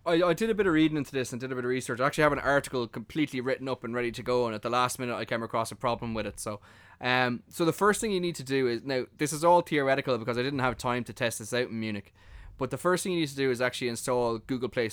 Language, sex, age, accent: English, male, 20-39, Irish